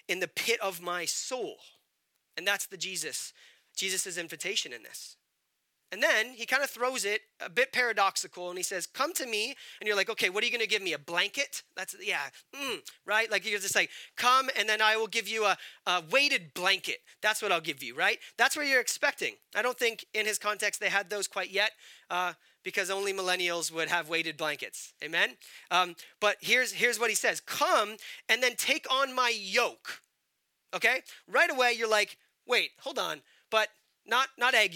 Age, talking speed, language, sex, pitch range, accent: 30-49, 205 wpm, English, male, 195-255 Hz, American